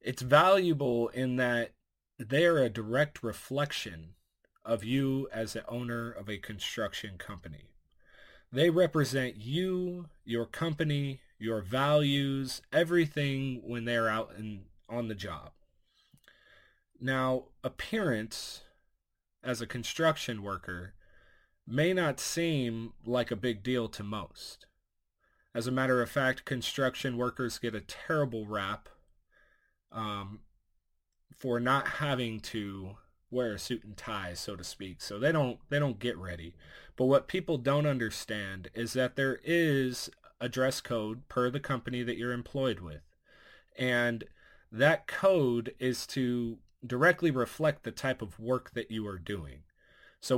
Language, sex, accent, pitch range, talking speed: English, male, American, 110-140 Hz, 135 wpm